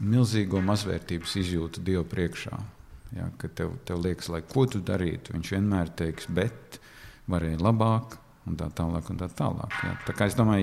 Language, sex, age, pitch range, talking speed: English, male, 50-69, 85-110 Hz, 175 wpm